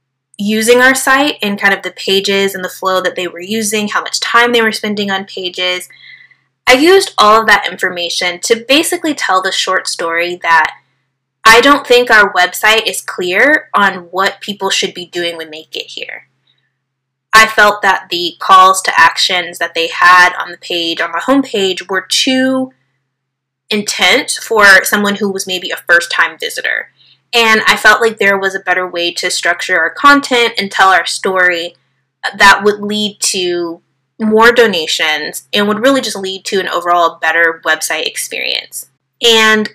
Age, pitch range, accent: 20-39, 180-245 Hz, American